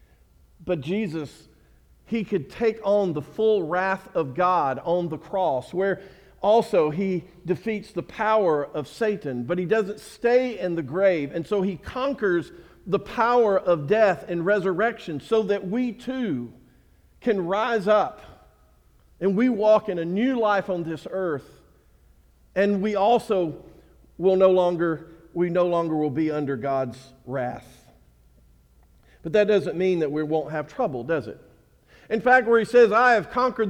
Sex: male